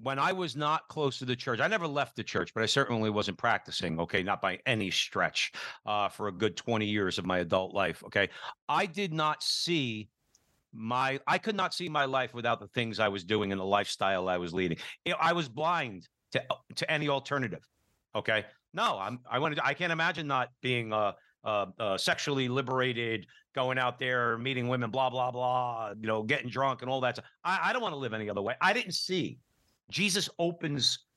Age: 50-69